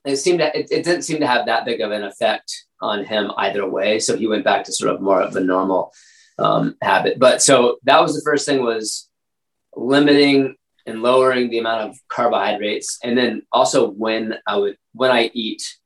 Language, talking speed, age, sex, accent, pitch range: English, 210 wpm, 20-39, male, American, 115-190 Hz